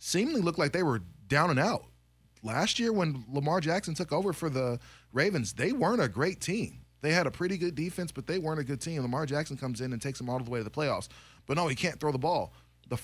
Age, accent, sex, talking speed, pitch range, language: 20-39, American, male, 260 wpm, 115-150 Hz, English